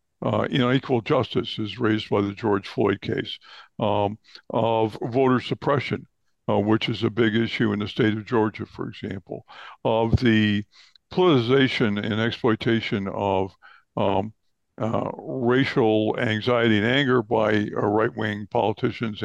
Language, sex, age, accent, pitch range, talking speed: English, male, 60-79, American, 105-125 Hz, 145 wpm